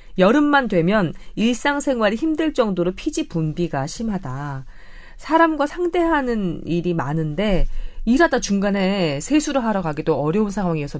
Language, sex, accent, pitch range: Korean, female, native, 160-255 Hz